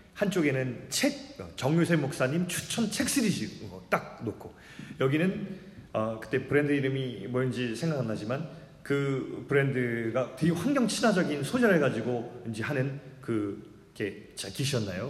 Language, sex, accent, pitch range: Korean, male, native, 120-185 Hz